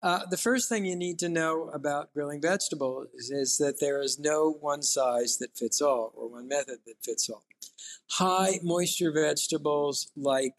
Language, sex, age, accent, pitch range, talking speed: English, male, 50-69, American, 140-165 Hz, 180 wpm